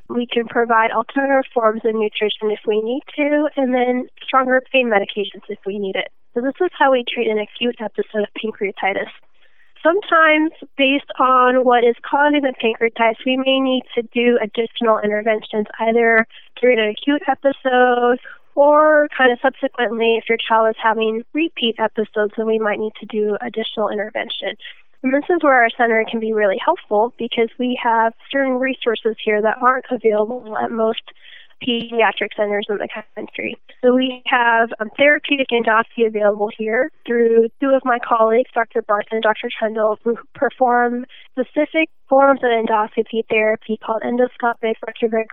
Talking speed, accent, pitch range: 165 wpm, American, 220-260 Hz